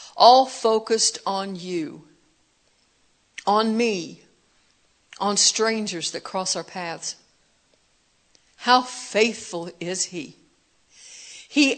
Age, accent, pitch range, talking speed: 60-79, American, 195-250 Hz, 85 wpm